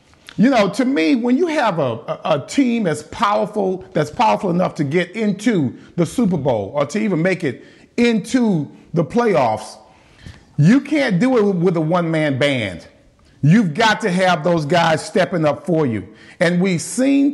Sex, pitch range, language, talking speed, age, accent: male, 150-210 Hz, English, 175 wpm, 40-59, American